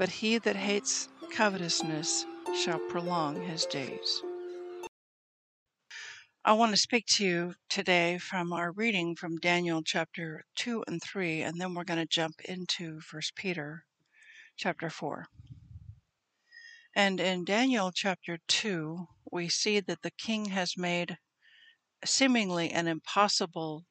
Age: 60-79